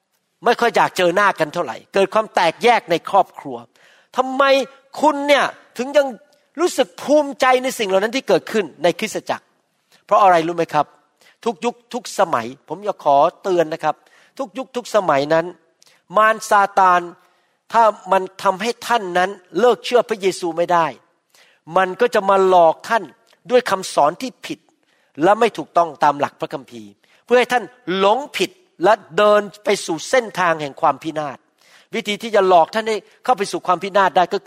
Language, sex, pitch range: Thai, male, 165-235 Hz